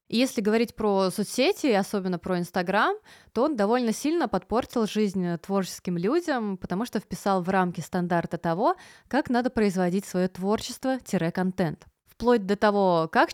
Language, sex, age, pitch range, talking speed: Russian, female, 20-39, 180-235 Hz, 140 wpm